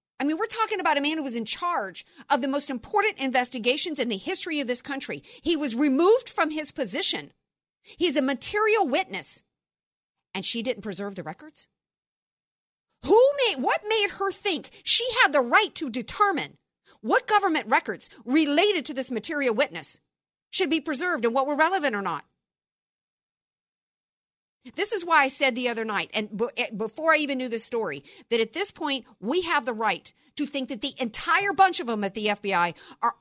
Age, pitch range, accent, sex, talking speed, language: 50-69, 230-335 Hz, American, female, 185 wpm, English